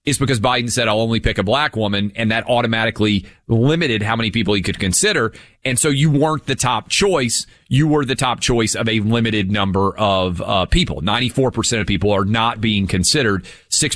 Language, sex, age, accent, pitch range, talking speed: English, male, 30-49, American, 100-135 Hz, 210 wpm